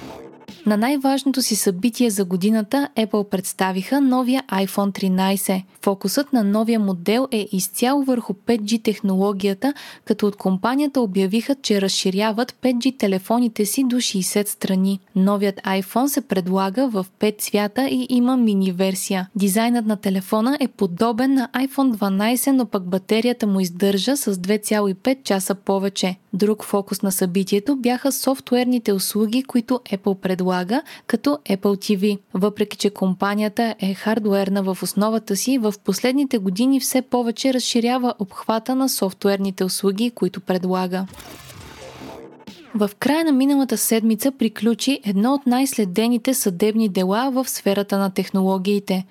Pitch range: 195-245 Hz